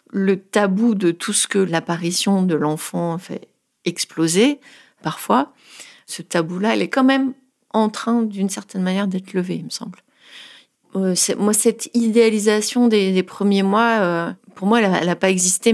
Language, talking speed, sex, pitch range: French, 170 wpm, female, 175-225 Hz